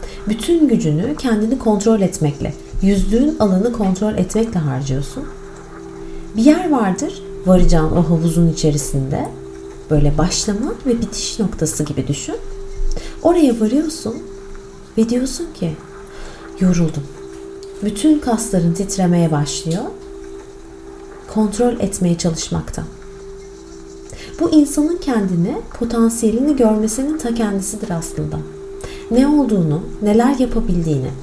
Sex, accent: female, native